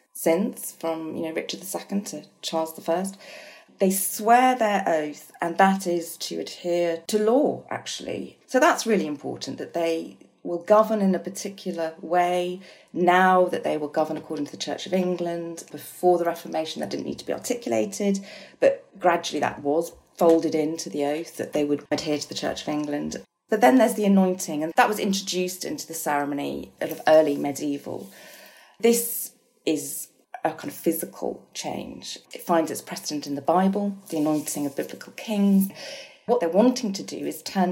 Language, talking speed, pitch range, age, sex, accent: English, 175 wpm, 155-200 Hz, 40-59, female, British